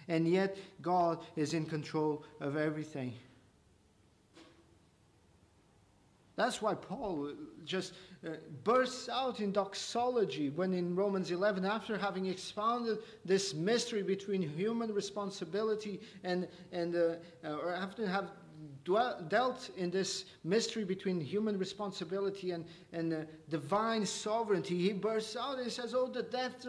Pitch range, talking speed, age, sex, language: 155-220 Hz, 125 wpm, 50-69, male, English